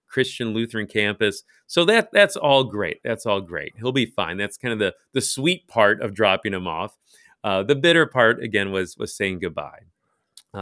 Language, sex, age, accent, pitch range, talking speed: English, male, 40-59, American, 100-130 Hz, 190 wpm